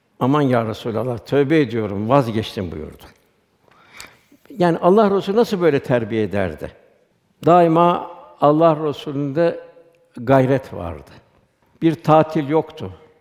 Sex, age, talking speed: male, 60-79, 100 wpm